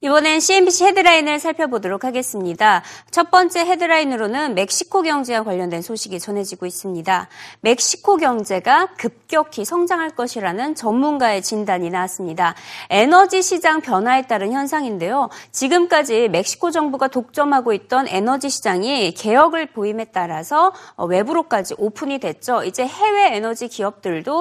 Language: Korean